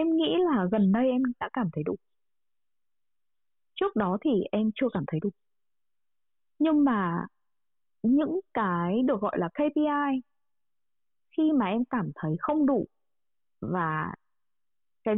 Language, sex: Vietnamese, female